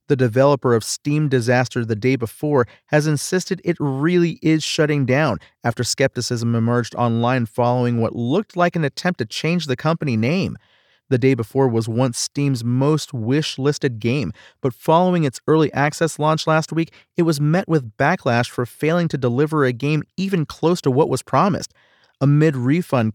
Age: 40-59